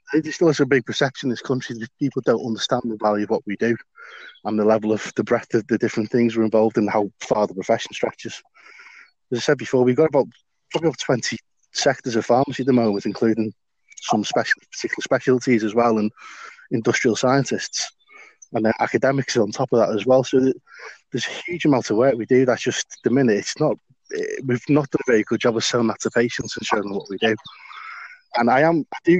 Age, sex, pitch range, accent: 20-39, male, 110-135 Hz, British